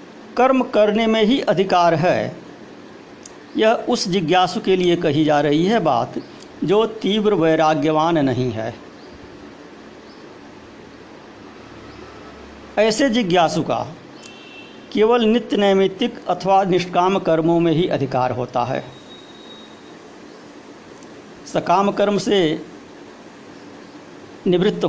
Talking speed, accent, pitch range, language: 95 wpm, native, 165-225 Hz, Hindi